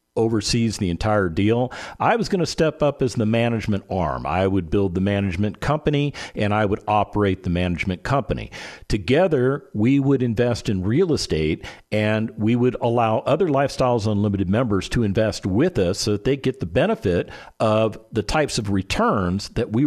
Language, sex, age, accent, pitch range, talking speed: English, male, 50-69, American, 95-135 Hz, 180 wpm